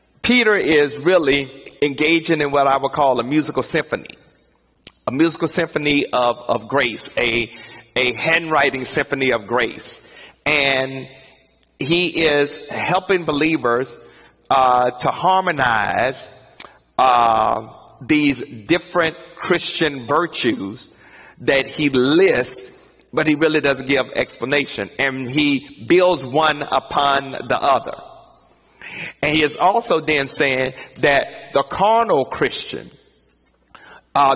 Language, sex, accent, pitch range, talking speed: English, male, American, 135-165 Hz, 110 wpm